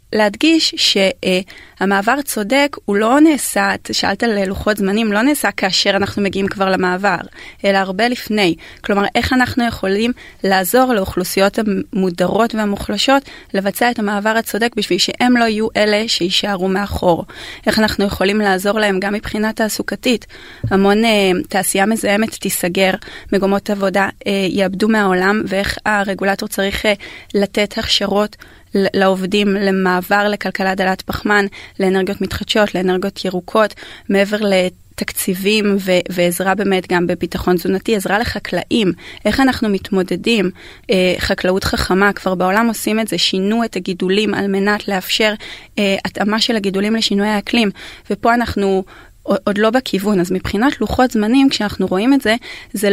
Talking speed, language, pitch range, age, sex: 135 wpm, Hebrew, 190-220 Hz, 30-49, female